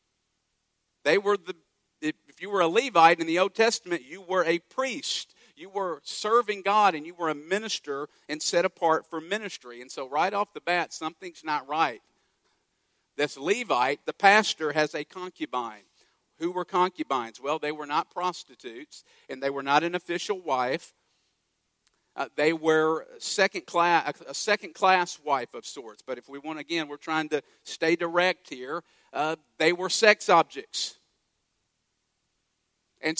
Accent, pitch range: American, 155-190 Hz